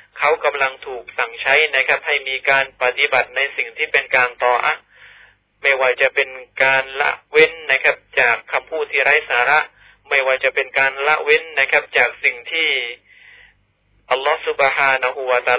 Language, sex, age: Thai, male, 20-39